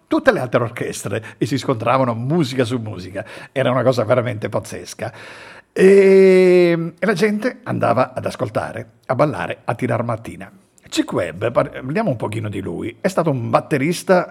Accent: native